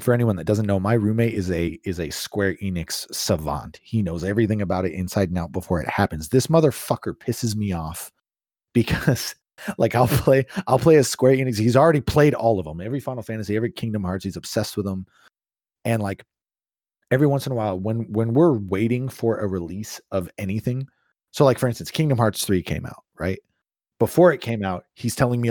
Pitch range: 100-135 Hz